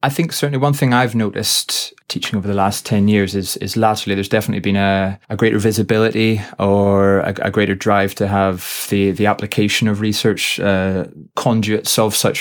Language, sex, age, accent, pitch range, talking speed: English, male, 20-39, British, 95-105 Hz, 190 wpm